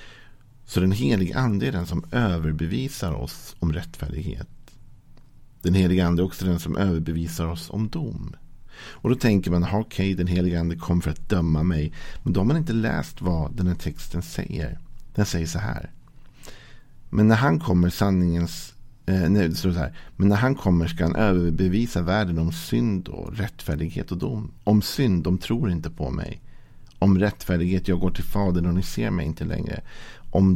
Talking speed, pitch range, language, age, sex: 165 wpm, 85-110 Hz, Swedish, 50-69, male